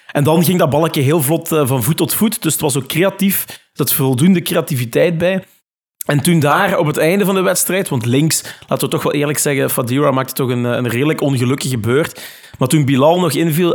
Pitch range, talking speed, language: 135-165 Hz, 225 wpm, Dutch